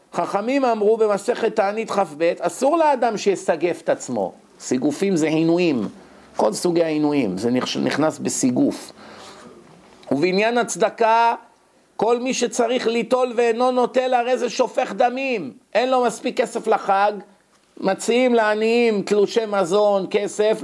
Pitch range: 150-225 Hz